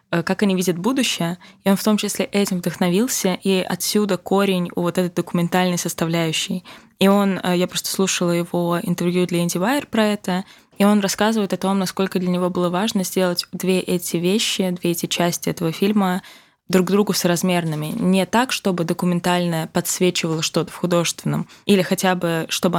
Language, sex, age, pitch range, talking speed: Russian, female, 20-39, 175-200 Hz, 175 wpm